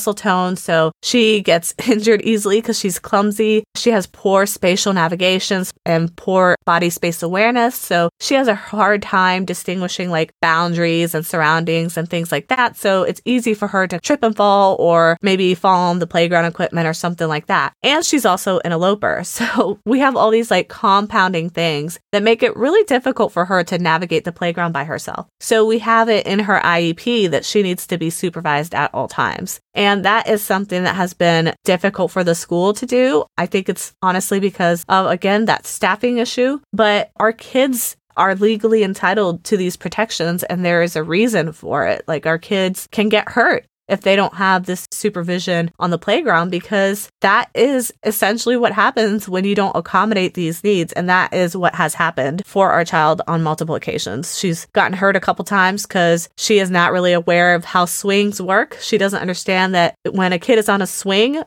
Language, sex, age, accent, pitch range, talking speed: English, female, 20-39, American, 175-215 Hz, 195 wpm